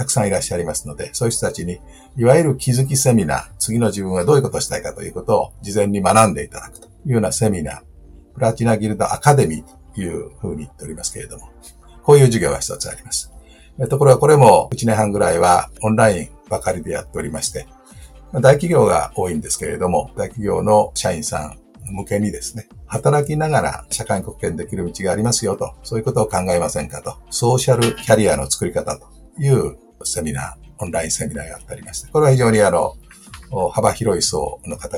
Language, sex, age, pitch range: Japanese, male, 50-69, 100-135 Hz